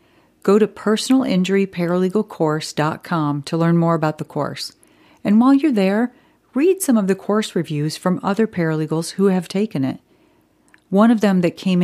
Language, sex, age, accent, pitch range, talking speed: English, female, 40-59, American, 155-200 Hz, 155 wpm